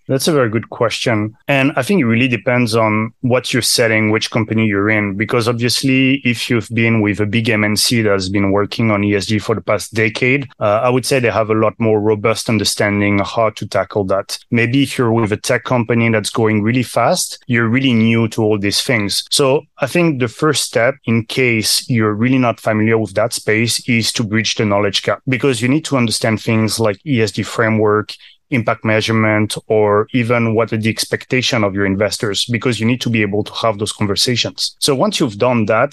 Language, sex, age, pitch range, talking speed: English, male, 30-49, 105-125 Hz, 215 wpm